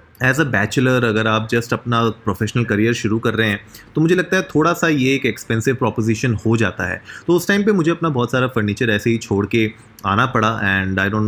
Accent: native